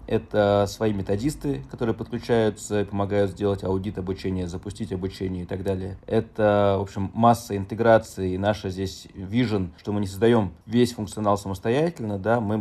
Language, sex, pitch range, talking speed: Russian, male, 95-120 Hz, 155 wpm